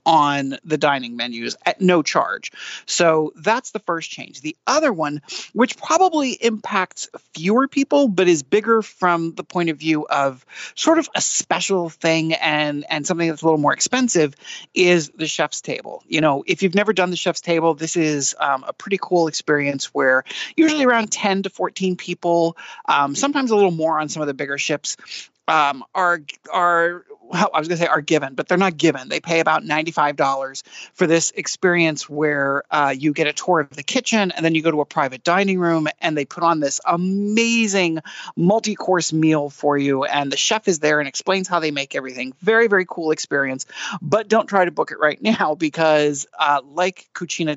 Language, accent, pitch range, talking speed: English, American, 150-190 Hz, 200 wpm